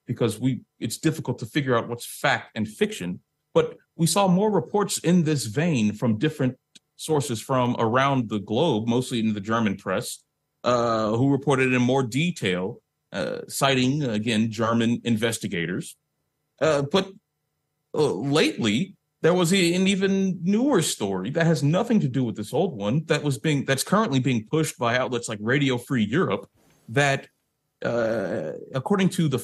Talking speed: 165 wpm